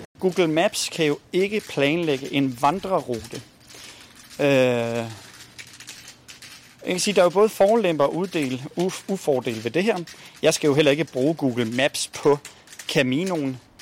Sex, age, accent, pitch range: male, 40-59, native, 110-160 Hz